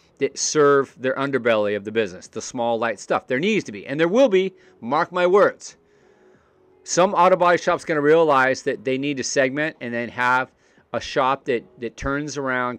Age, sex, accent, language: 40-59, male, American, English